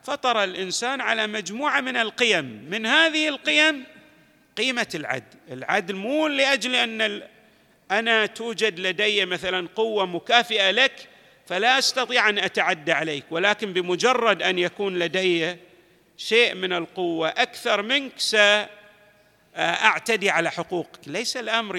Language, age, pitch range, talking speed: Arabic, 50-69, 180-260 Hz, 120 wpm